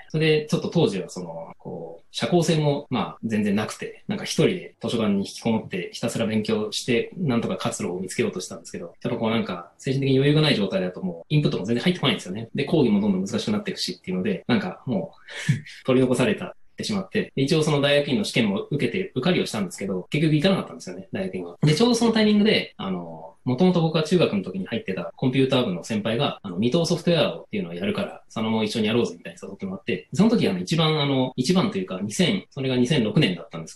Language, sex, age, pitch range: Japanese, male, 20-39, 115-190 Hz